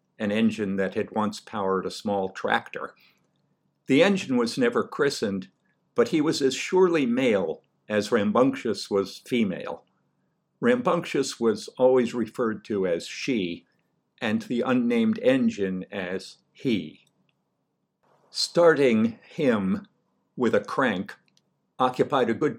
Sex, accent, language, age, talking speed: male, American, English, 50-69, 120 wpm